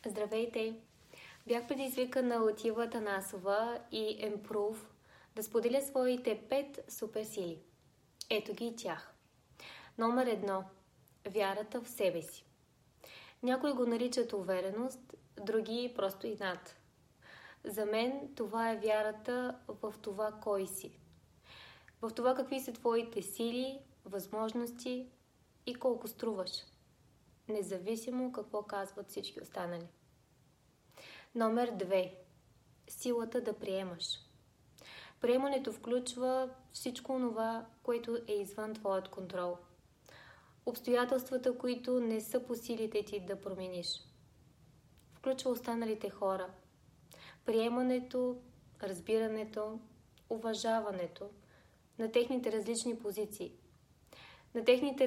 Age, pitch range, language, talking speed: 20-39, 195-245 Hz, Bulgarian, 100 wpm